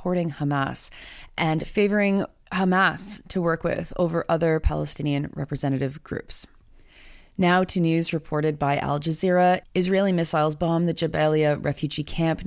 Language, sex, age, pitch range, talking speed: English, female, 30-49, 145-170 Hz, 130 wpm